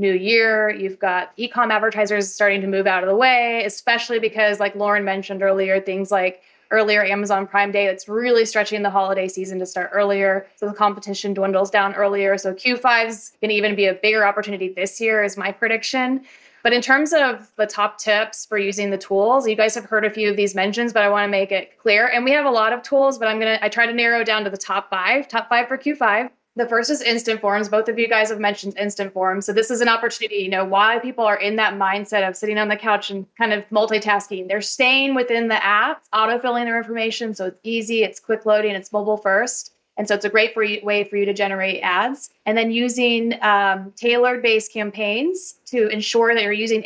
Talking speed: 235 wpm